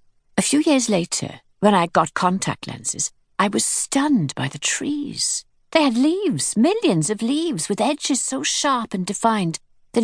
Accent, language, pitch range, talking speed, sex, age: British, English, 150-205 Hz, 165 wpm, female, 50-69